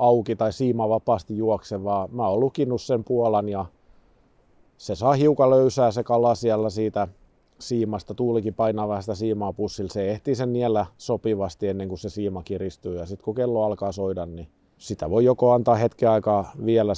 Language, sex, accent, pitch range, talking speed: Finnish, male, native, 95-120 Hz, 170 wpm